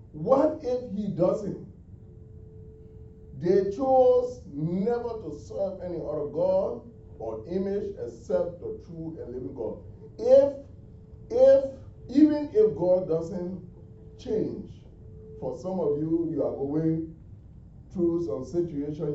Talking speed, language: 115 wpm, English